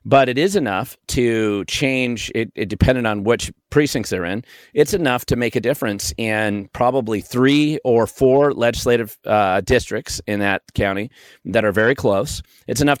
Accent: American